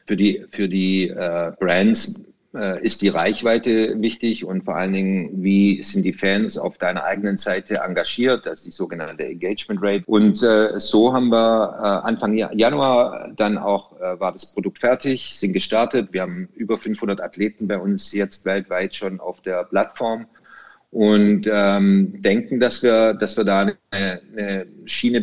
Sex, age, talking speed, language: male, 50-69, 165 wpm, German